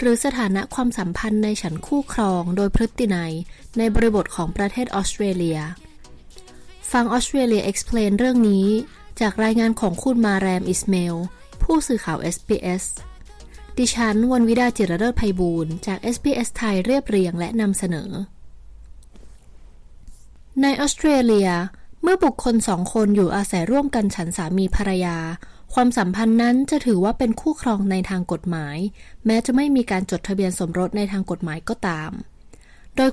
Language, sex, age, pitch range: Thai, female, 20-39, 185-245 Hz